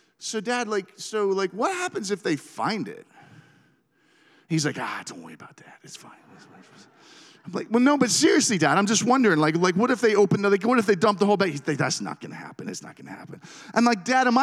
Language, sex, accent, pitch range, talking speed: English, male, American, 150-225 Hz, 235 wpm